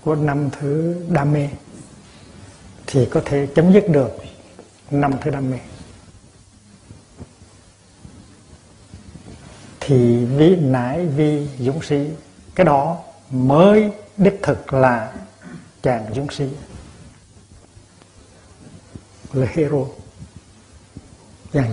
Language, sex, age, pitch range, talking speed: Vietnamese, male, 60-79, 100-145 Hz, 90 wpm